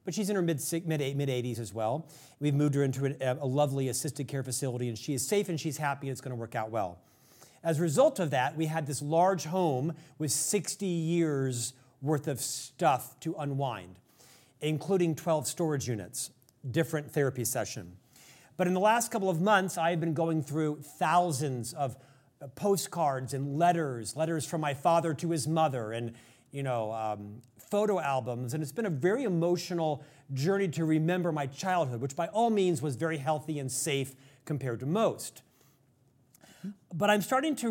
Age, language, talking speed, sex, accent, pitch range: 40-59, English, 180 wpm, male, American, 135-170 Hz